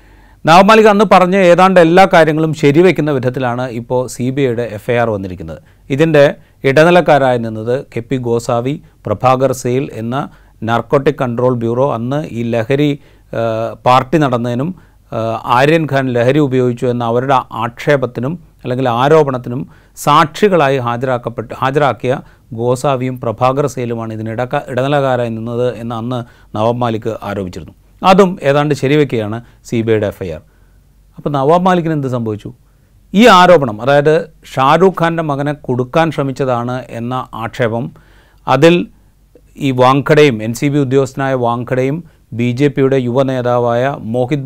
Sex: male